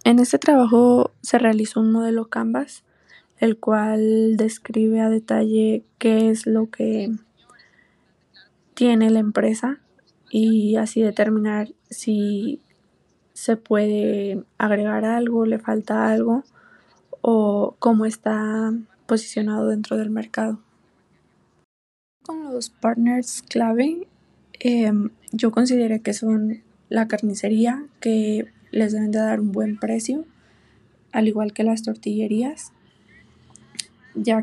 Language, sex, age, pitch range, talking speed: English, female, 20-39, 215-230 Hz, 110 wpm